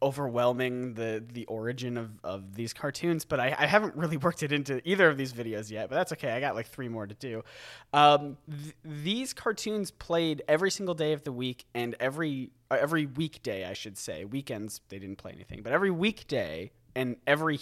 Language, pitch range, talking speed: English, 120-170 Hz, 200 wpm